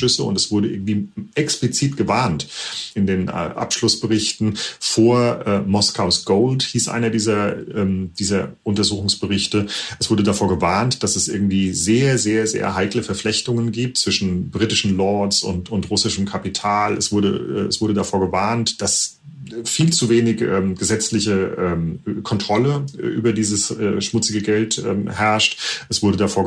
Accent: German